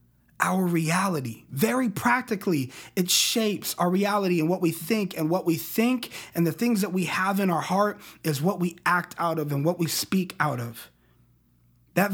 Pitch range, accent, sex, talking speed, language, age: 135-185 Hz, American, male, 190 wpm, English, 30-49